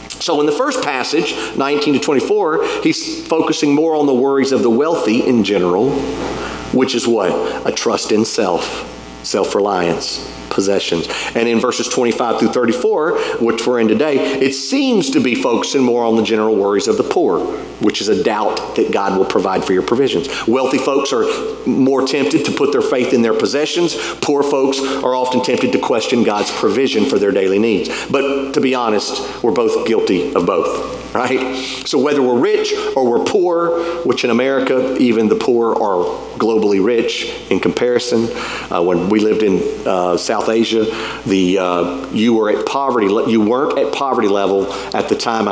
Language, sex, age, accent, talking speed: English, male, 40-59, American, 180 wpm